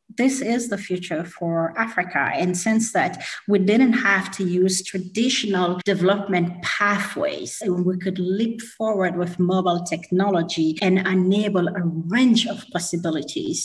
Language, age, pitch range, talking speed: English, 30-49, 170-205 Hz, 135 wpm